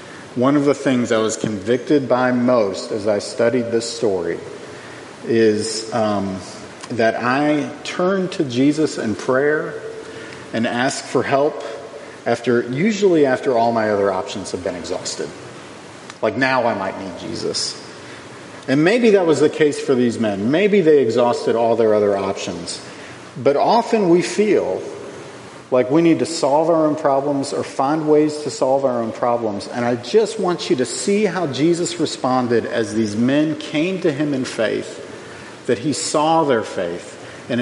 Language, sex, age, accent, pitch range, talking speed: English, male, 40-59, American, 120-200 Hz, 165 wpm